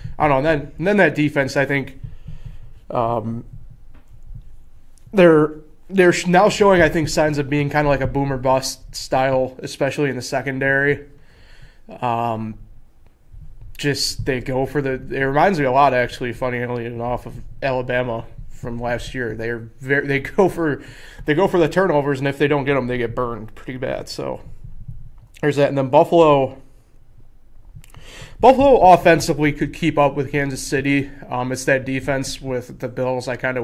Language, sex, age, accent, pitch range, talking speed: English, male, 20-39, American, 120-145 Hz, 170 wpm